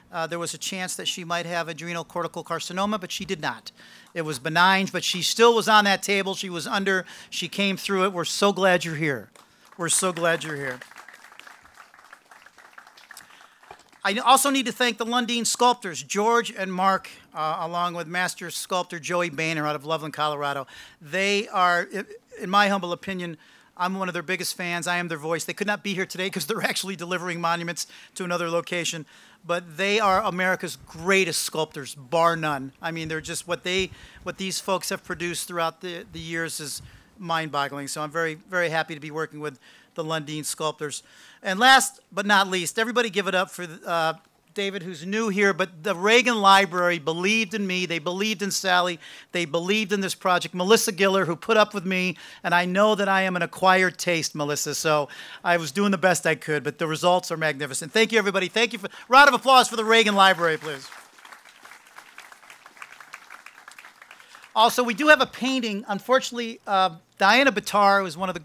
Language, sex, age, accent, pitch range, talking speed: English, male, 50-69, American, 165-200 Hz, 195 wpm